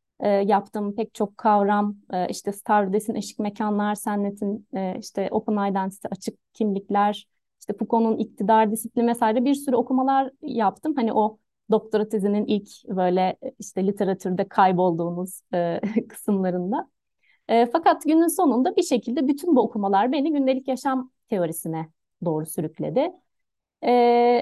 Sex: female